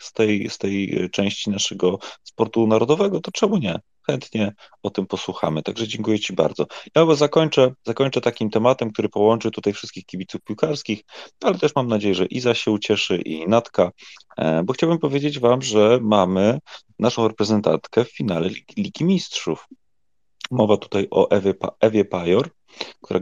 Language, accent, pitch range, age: Polish, native, 85-115 Hz, 30-49